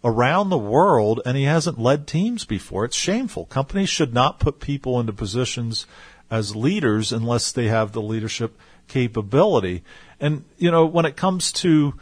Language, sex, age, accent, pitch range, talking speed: English, male, 50-69, American, 110-150 Hz, 165 wpm